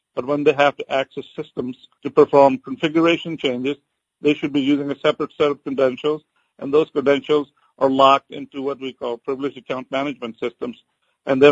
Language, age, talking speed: English, 50-69, 180 wpm